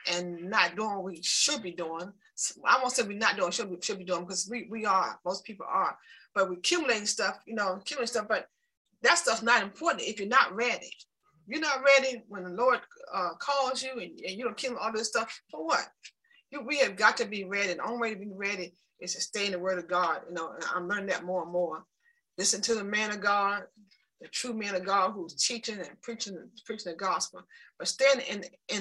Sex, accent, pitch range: female, American, 185-240 Hz